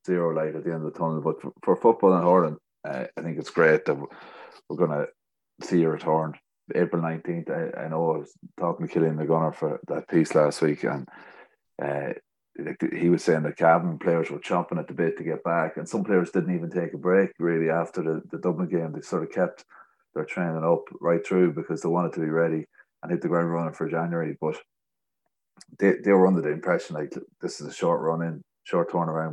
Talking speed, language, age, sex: 225 wpm, English, 30-49, male